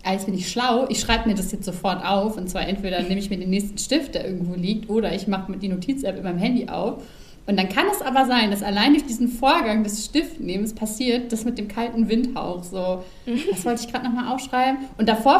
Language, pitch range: German, 195-240 Hz